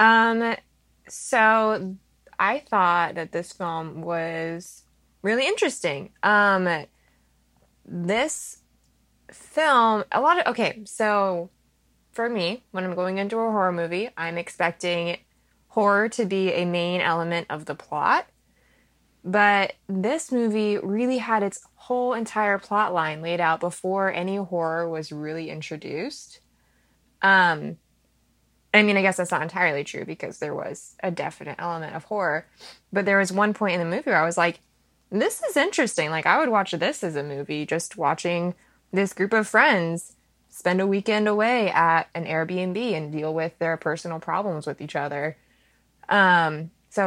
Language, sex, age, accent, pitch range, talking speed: English, female, 20-39, American, 160-205 Hz, 155 wpm